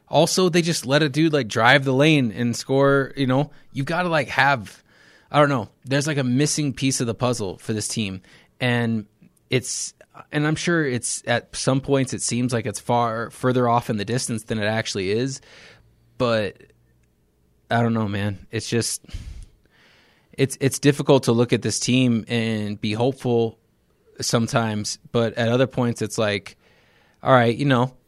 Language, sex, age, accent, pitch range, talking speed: English, male, 20-39, American, 105-130 Hz, 190 wpm